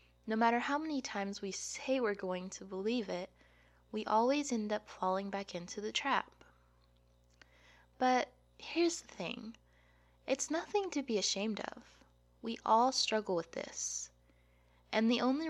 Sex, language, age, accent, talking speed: female, English, 20-39, American, 150 wpm